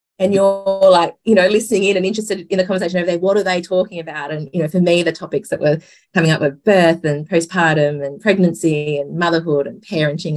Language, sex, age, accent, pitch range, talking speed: English, female, 30-49, Australian, 160-200 Hz, 230 wpm